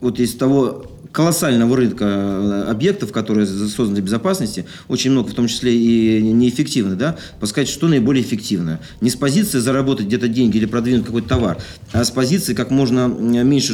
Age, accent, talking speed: 40-59, native, 165 wpm